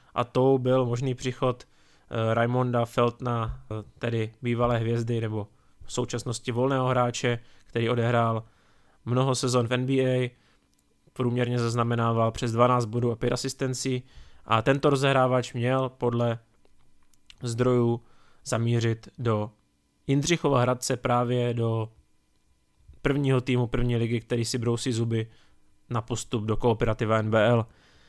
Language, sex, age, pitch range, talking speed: Czech, male, 20-39, 115-130 Hz, 115 wpm